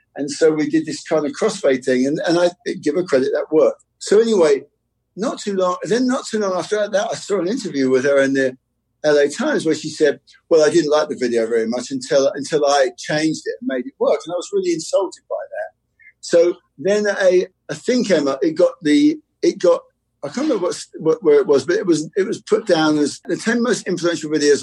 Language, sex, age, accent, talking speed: English, male, 50-69, British, 240 wpm